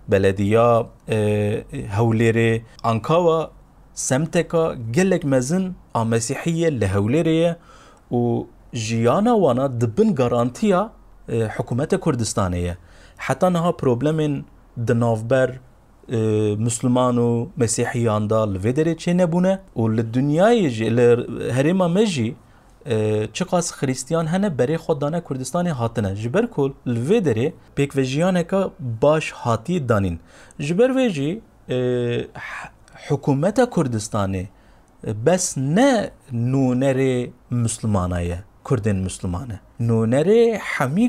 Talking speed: 80 wpm